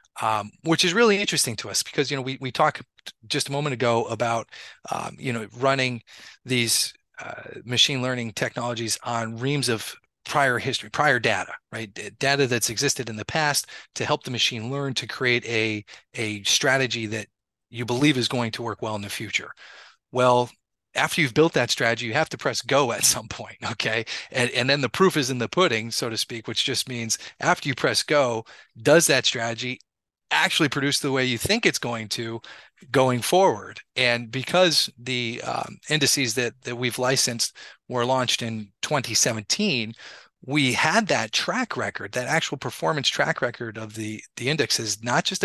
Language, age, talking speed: English, 30-49, 185 wpm